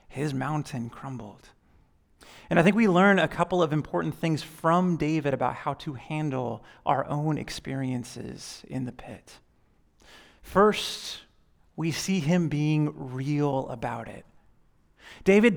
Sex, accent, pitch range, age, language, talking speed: male, American, 135-180 Hz, 30-49, English, 130 wpm